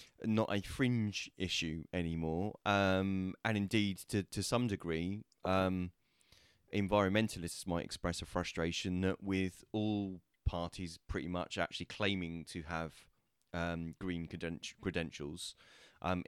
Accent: British